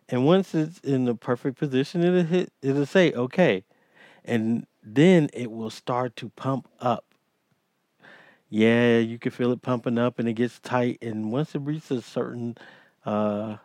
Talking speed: 165 wpm